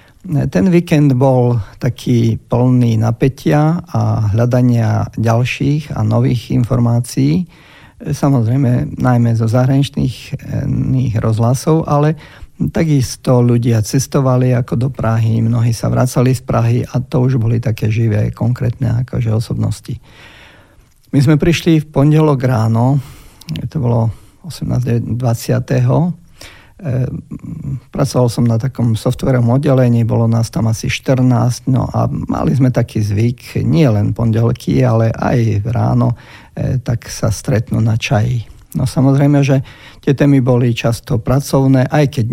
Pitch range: 115-135 Hz